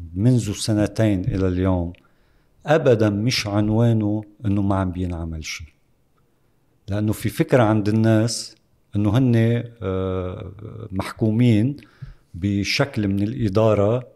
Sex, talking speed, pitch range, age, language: male, 100 wpm, 105-130 Hz, 50-69, Arabic